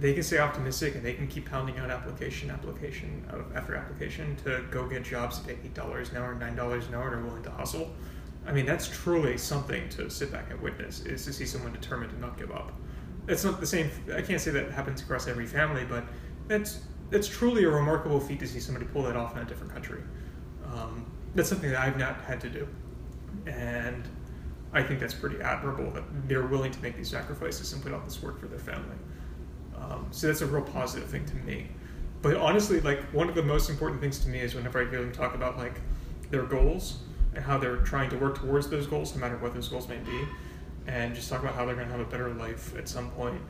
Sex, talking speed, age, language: male, 235 wpm, 30-49, English